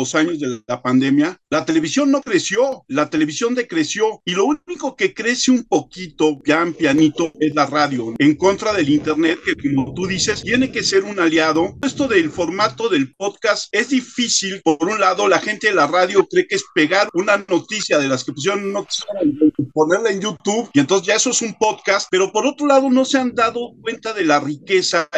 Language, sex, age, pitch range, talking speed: Spanish, male, 50-69, 160-235 Hz, 205 wpm